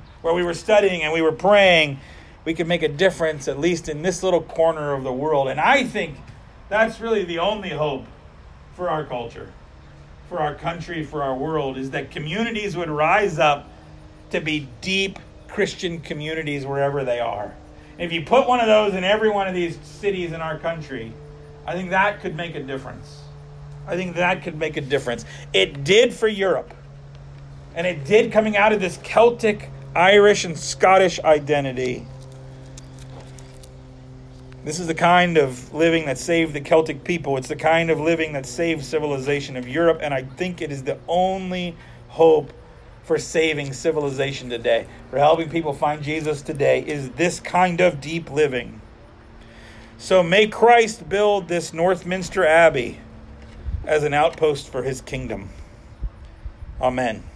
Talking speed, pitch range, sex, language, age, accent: 165 wpm, 130-175 Hz, male, English, 40-59, American